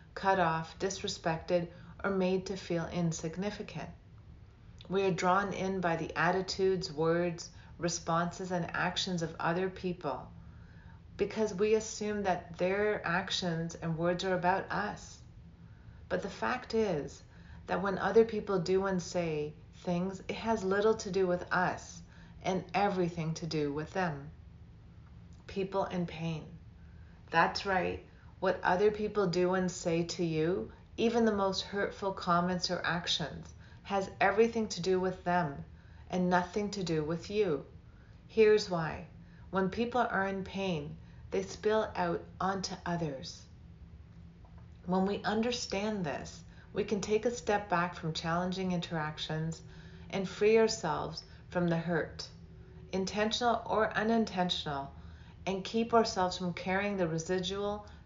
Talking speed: 135 wpm